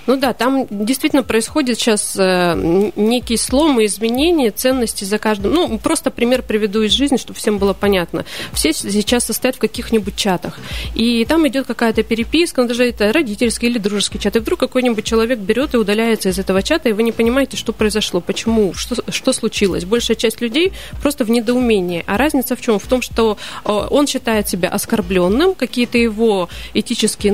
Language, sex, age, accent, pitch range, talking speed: Russian, female, 30-49, native, 205-250 Hz, 180 wpm